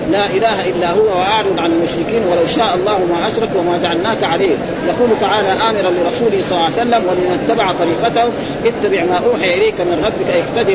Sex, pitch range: male, 175-225 Hz